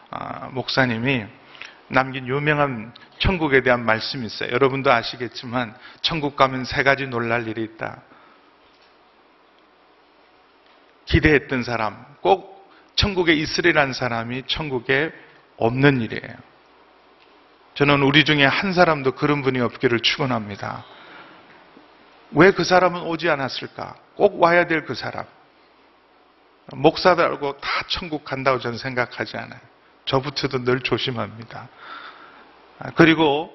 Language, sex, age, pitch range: Korean, male, 40-59, 130-170 Hz